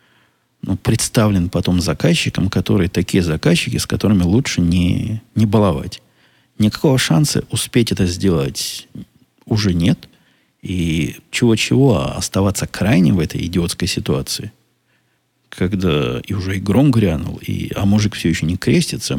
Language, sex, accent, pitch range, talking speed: Russian, male, native, 90-110 Hz, 120 wpm